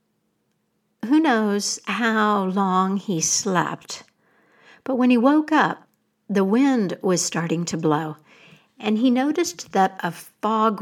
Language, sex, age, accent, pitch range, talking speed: English, female, 60-79, American, 165-225 Hz, 130 wpm